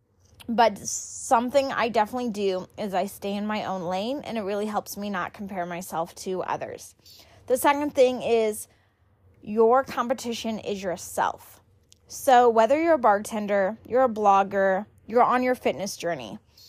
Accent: American